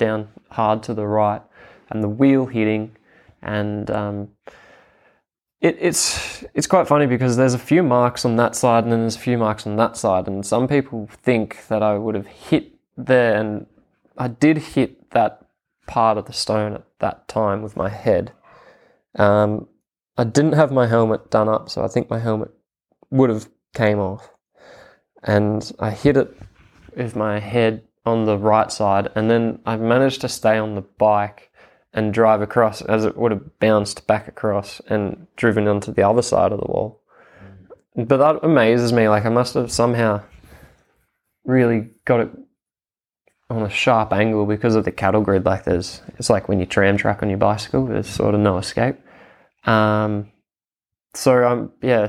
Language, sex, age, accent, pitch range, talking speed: English, male, 20-39, Australian, 105-120 Hz, 180 wpm